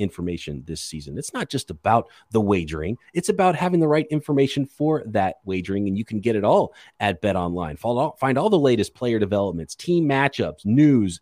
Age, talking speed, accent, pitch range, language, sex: 30-49, 195 wpm, American, 100-150 Hz, English, male